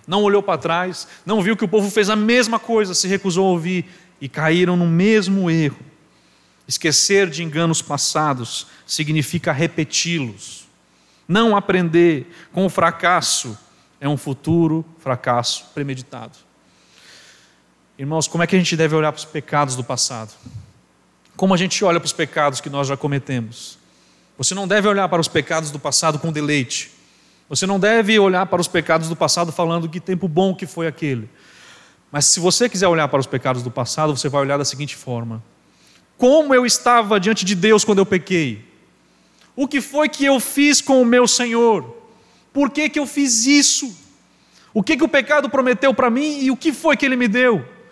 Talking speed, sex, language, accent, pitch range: 185 wpm, male, Portuguese, Brazilian, 145-235 Hz